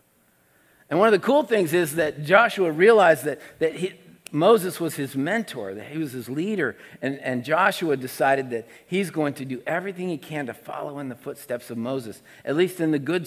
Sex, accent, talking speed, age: male, American, 205 wpm, 50-69